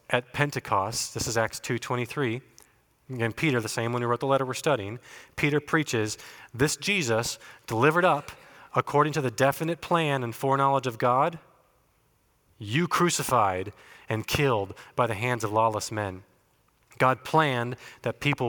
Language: English